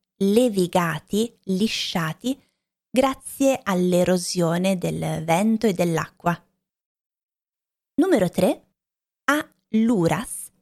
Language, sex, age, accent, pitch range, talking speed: Italian, female, 20-39, native, 185-235 Hz, 70 wpm